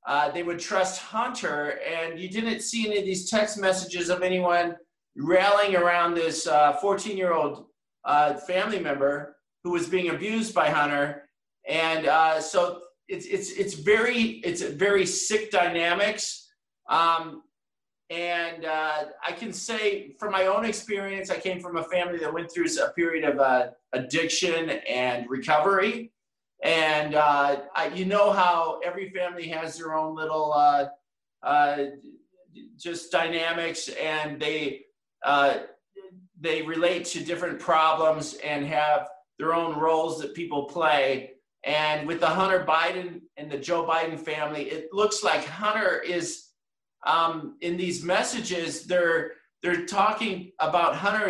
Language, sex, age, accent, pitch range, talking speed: English, male, 50-69, American, 155-190 Hz, 145 wpm